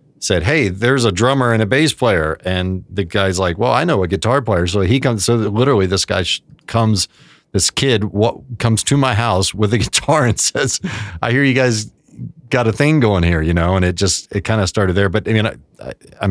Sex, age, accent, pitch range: male, 40-59, American, 85-115 Hz